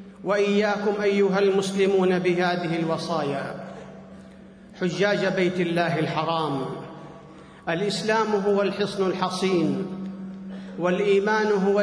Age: 40-59